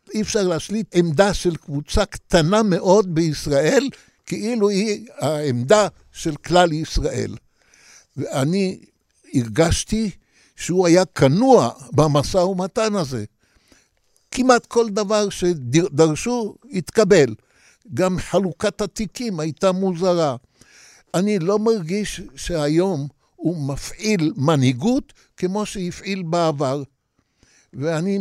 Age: 60-79